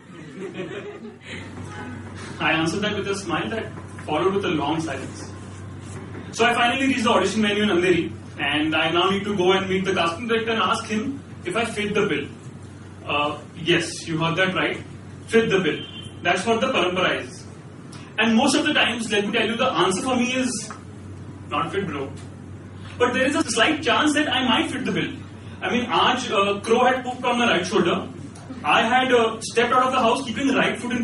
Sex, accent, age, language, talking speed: male, native, 30-49, Hindi, 210 wpm